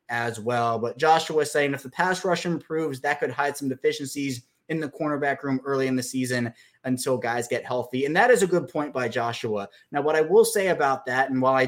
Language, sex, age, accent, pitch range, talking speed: English, male, 20-39, American, 125-150 Hz, 235 wpm